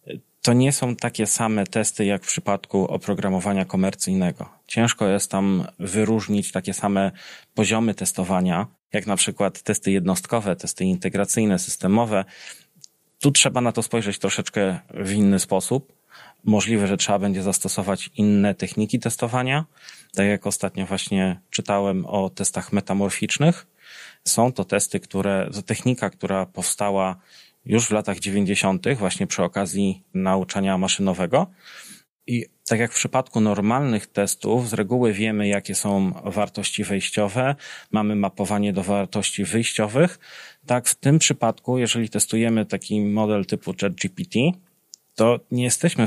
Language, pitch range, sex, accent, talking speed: Polish, 100-115 Hz, male, native, 130 wpm